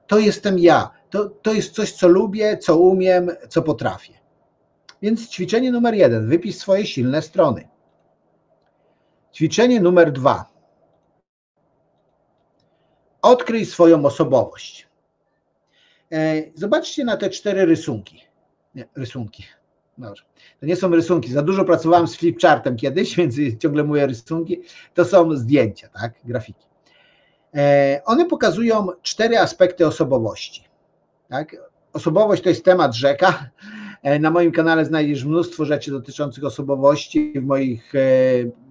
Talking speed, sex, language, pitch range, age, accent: 115 wpm, male, Polish, 140-190 Hz, 50-69, native